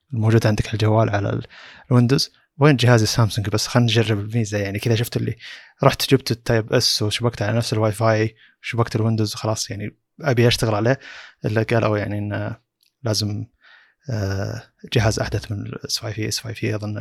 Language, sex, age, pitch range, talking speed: Arabic, male, 20-39, 110-125 Hz, 165 wpm